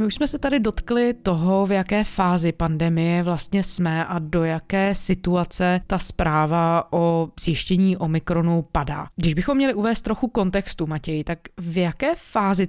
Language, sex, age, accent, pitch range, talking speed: Czech, female, 20-39, native, 160-185 Hz, 160 wpm